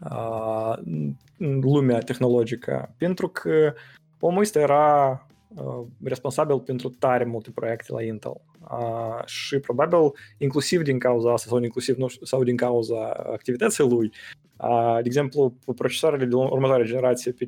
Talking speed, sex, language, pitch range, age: 150 wpm, male, English, 120-145 Hz, 20-39